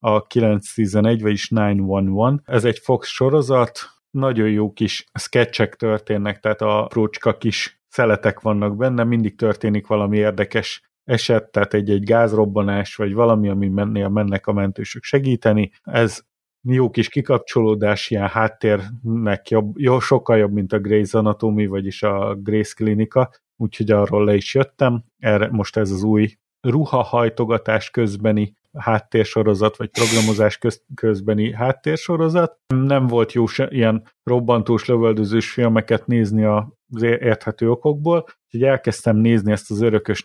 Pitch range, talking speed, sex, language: 105-120 Hz, 135 wpm, male, Hungarian